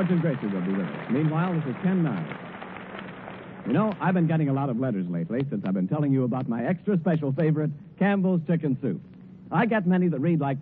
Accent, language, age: American, English, 60-79